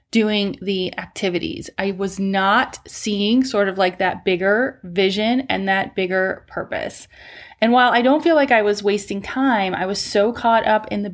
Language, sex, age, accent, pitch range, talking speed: English, female, 30-49, American, 185-220 Hz, 185 wpm